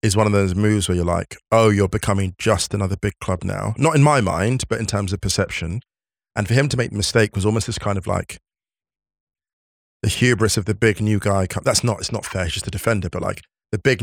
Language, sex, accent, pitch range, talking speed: English, male, British, 95-110 Hz, 250 wpm